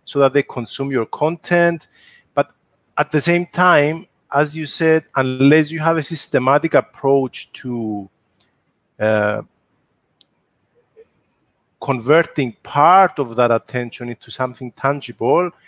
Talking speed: 115 wpm